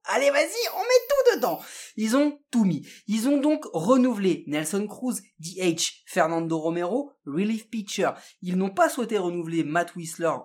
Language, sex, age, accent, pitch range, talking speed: French, male, 30-49, French, 165-245 Hz, 160 wpm